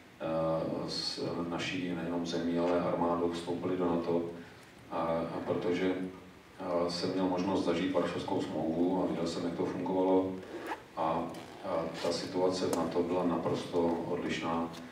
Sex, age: male, 40-59